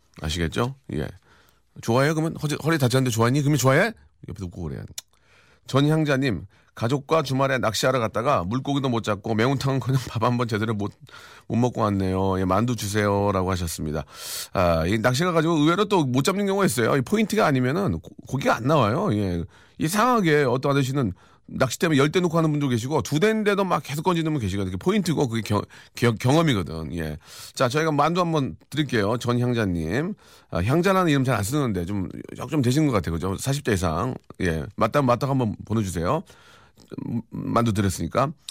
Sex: male